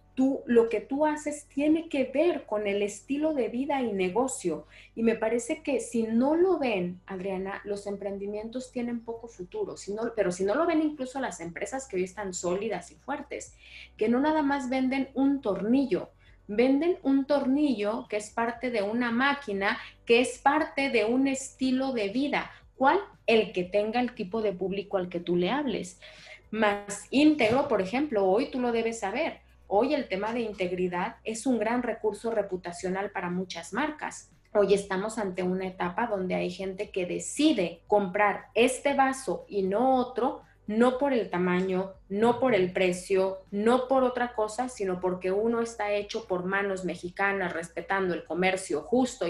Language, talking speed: Spanish, 175 wpm